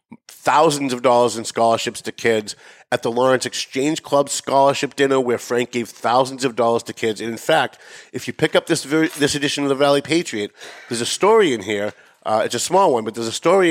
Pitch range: 110-135 Hz